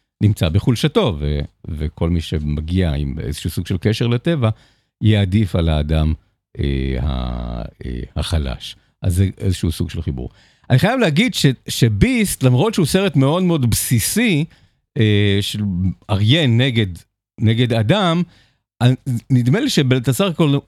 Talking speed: 130 wpm